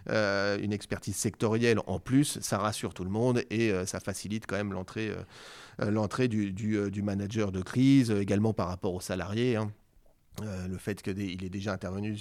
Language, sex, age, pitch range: French, male, 30-49, 100-125 Hz